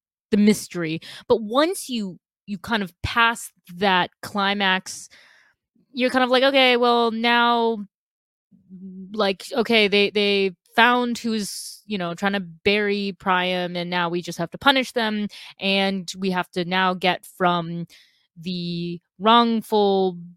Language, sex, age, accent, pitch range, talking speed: English, female, 20-39, American, 175-215 Hz, 140 wpm